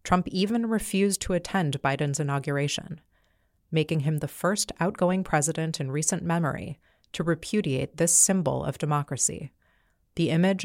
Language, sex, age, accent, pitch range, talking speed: English, female, 30-49, American, 135-180 Hz, 135 wpm